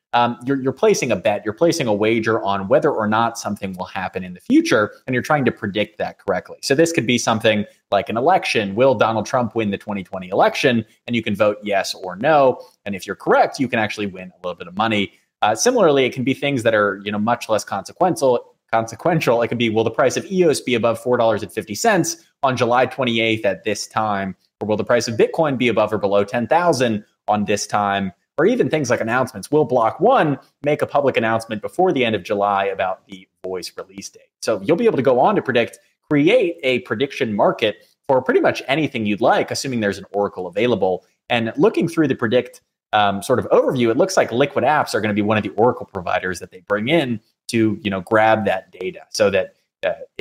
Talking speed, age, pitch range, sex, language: 225 wpm, 20-39, 105-135 Hz, male, English